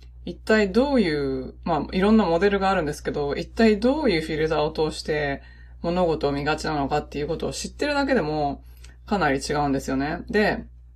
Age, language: 20-39, Japanese